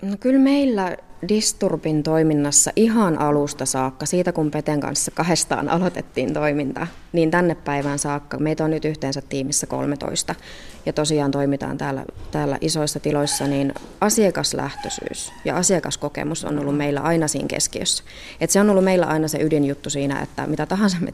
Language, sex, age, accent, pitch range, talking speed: Finnish, female, 20-39, native, 145-180 Hz, 155 wpm